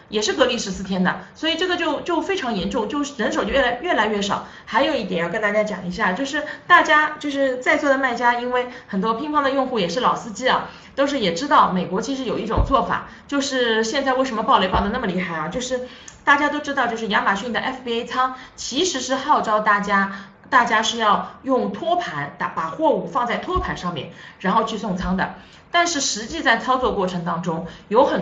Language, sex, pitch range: Chinese, female, 195-275 Hz